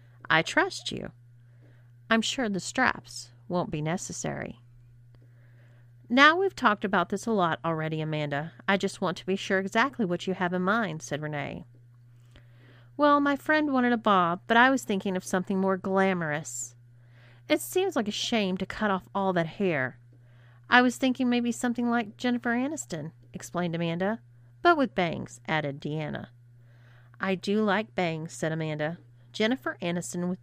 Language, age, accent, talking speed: English, 40-59, American, 160 wpm